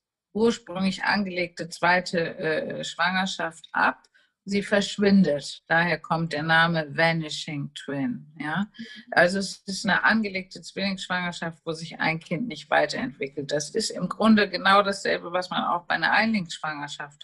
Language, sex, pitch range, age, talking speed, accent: German, female, 165-200 Hz, 50-69, 130 wpm, German